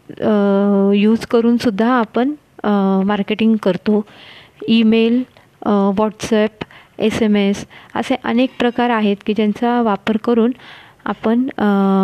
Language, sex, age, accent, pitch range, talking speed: Marathi, female, 30-49, native, 205-250 Hz, 85 wpm